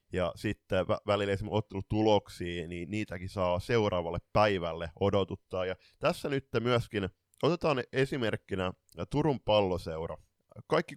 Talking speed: 110 wpm